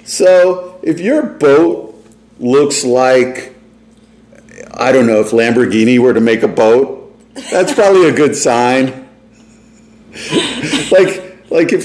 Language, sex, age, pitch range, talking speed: English, male, 50-69, 115-150 Hz, 120 wpm